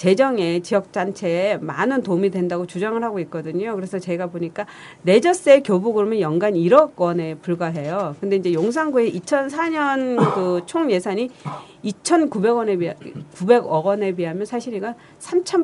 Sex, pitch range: female, 175-235 Hz